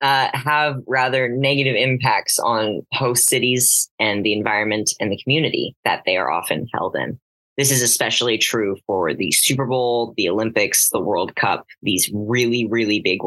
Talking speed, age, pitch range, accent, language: 165 wpm, 10-29, 110-130 Hz, American, English